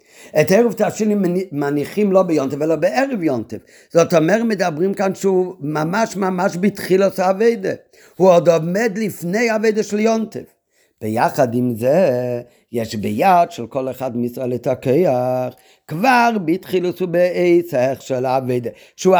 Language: Hebrew